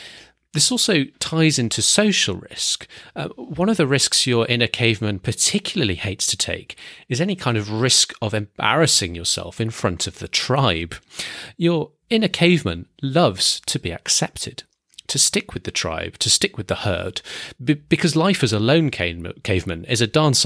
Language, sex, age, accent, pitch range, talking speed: English, male, 30-49, British, 95-135 Hz, 165 wpm